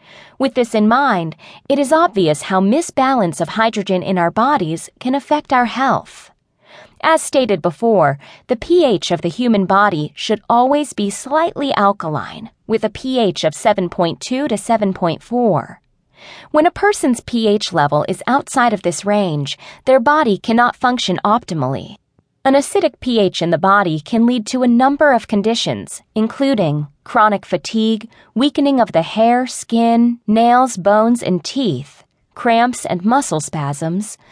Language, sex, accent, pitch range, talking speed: English, female, American, 185-255 Hz, 145 wpm